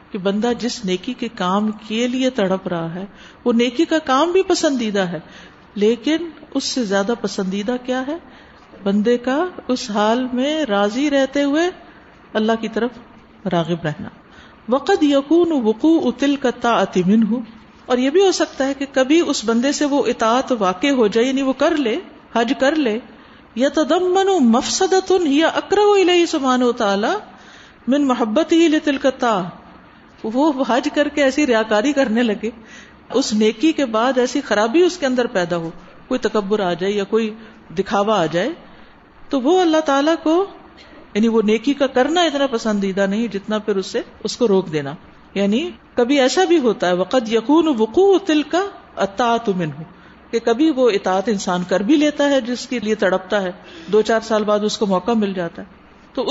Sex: female